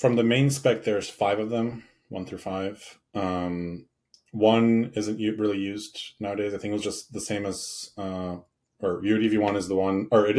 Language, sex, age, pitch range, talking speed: English, male, 30-49, 90-110 Hz, 195 wpm